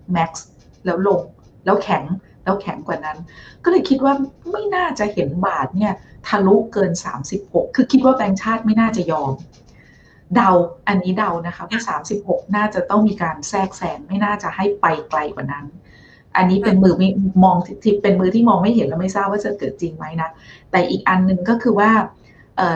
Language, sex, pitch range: Thai, female, 175-220 Hz